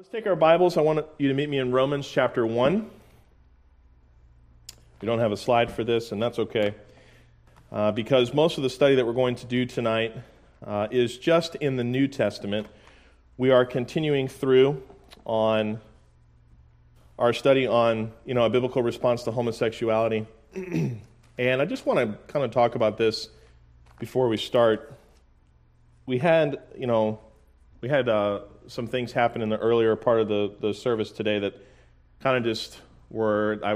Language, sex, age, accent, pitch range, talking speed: English, male, 40-59, American, 100-125 Hz, 170 wpm